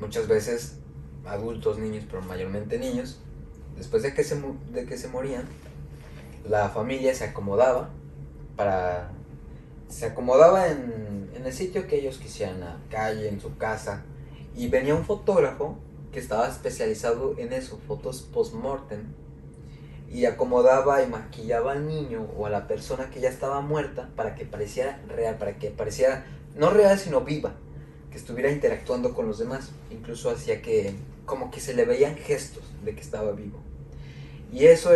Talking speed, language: 155 wpm, Spanish